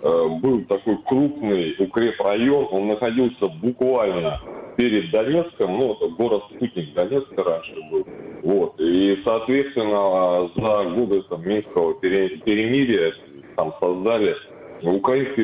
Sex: male